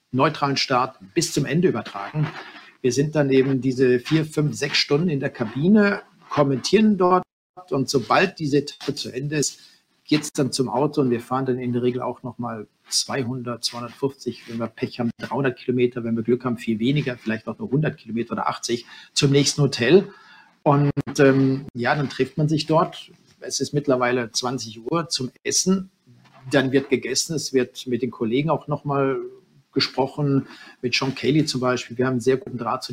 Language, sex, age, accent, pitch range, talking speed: German, male, 50-69, German, 125-145 Hz, 190 wpm